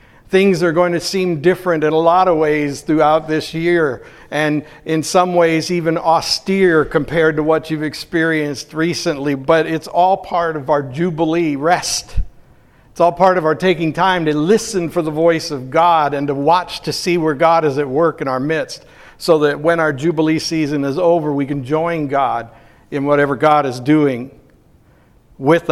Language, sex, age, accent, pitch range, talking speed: English, male, 60-79, American, 150-175 Hz, 185 wpm